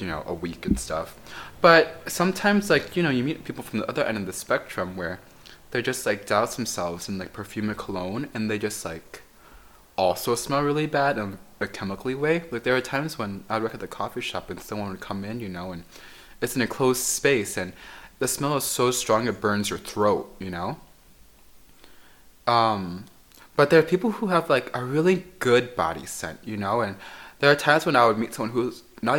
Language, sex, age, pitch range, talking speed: English, male, 20-39, 105-145 Hz, 220 wpm